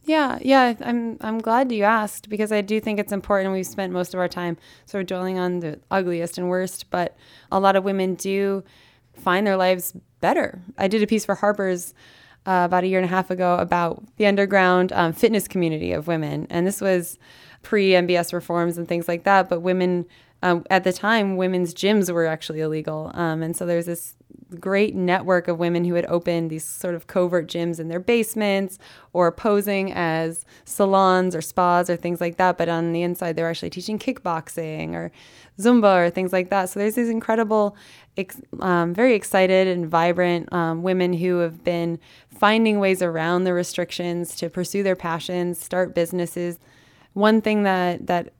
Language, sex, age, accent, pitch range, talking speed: English, female, 20-39, American, 170-195 Hz, 190 wpm